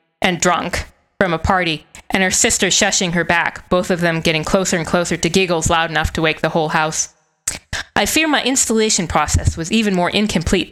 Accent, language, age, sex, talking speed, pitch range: American, English, 20-39, female, 200 wpm, 160-195 Hz